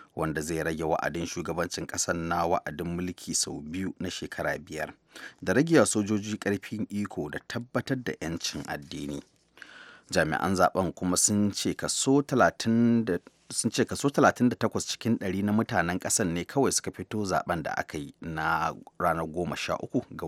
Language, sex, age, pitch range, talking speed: English, male, 30-49, 85-115 Hz, 150 wpm